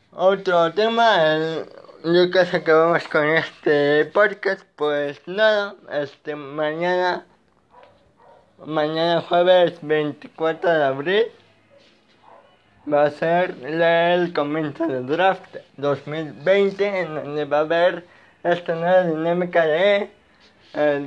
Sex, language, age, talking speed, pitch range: male, Spanish, 20-39, 115 wpm, 145-180 Hz